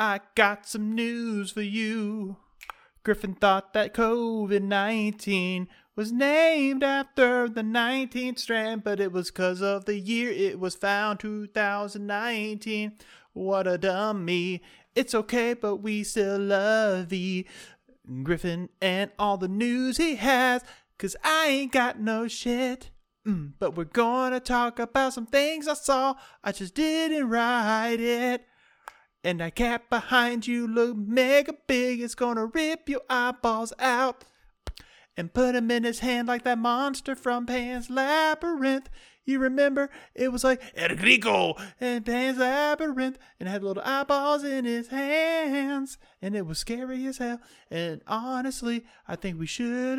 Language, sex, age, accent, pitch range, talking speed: English, male, 30-49, American, 200-255 Hz, 145 wpm